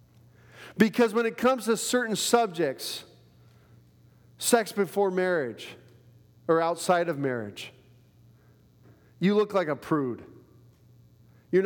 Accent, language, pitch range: American, English, 120-155 Hz